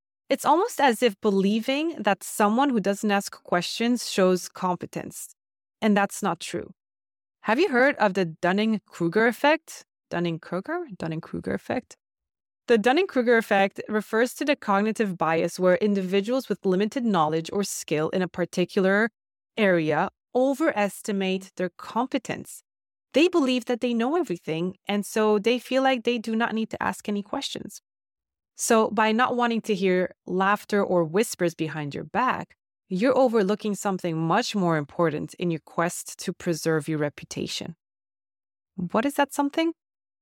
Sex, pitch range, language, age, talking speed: female, 175-240 Hz, English, 20-39, 145 wpm